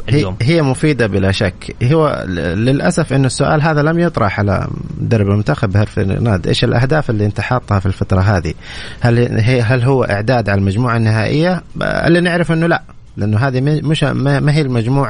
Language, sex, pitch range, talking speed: Arabic, male, 100-140 Hz, 165 wpm